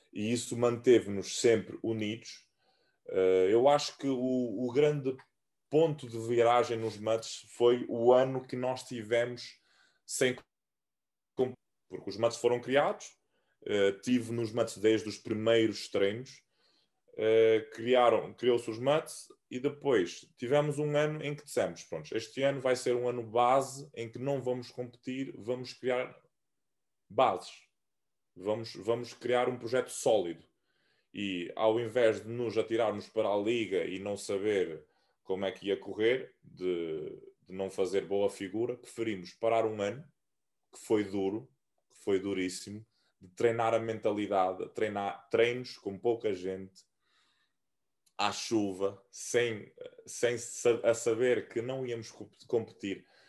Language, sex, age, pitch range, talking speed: English, male, 20-39, 110-130 Hz, 135 wpm